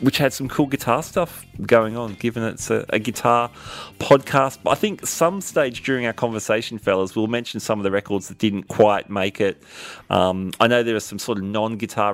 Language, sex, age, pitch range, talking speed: English, male, 30-49, 95-120 Hz, 215 wpm